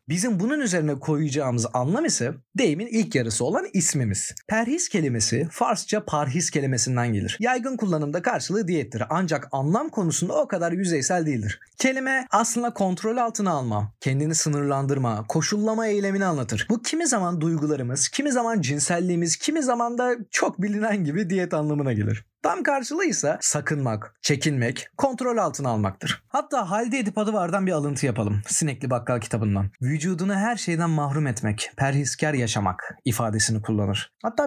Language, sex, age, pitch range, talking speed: Turkish, male, 40-59, 130-210 Hz, 145 wpm